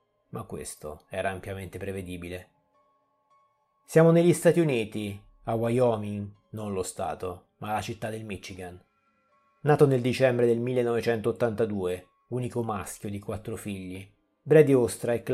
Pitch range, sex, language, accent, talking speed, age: 95-130 Hz, male, Italian, native, 120 wpm, 30-49